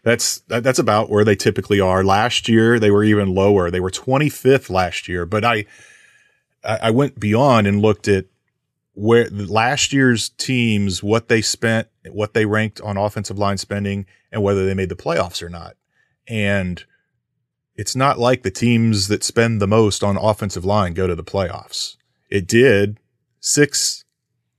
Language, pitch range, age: English, 95-115 Hz, 30-49